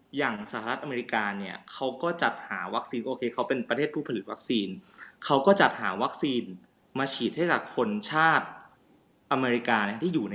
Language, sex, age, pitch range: Thai, male, 20-39, 115-140 Hz